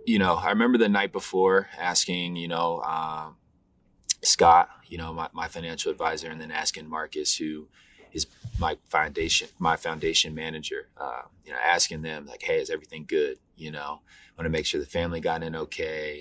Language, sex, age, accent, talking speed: English, male, 20-39, American, 190 wpm